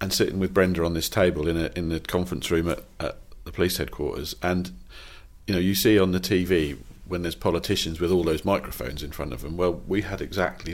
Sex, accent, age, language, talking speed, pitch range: male, British, 40-59, English, 235 wpm, 80-95 Hz